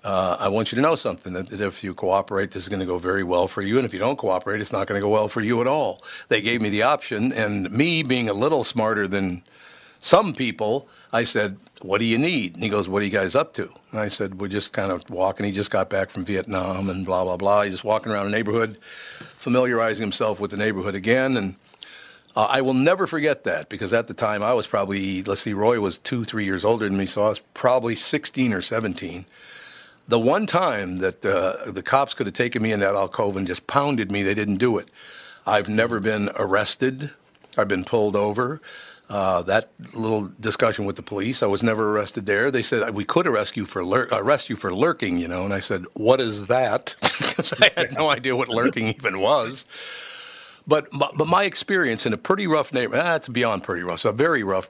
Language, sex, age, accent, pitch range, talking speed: English, male, 50-69, American, 95-115 Hz, 240 wpm